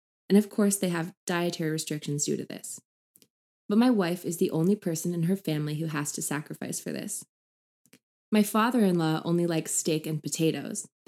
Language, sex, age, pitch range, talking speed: English, female, 20-39, 155-195 Hz, 180 wpm